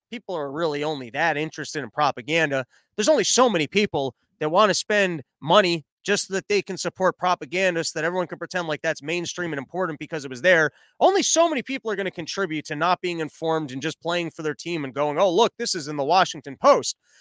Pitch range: 160-225 Hz